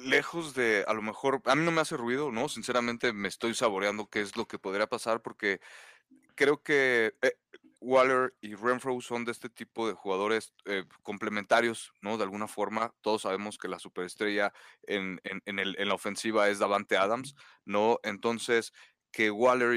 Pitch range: 100-120 Hz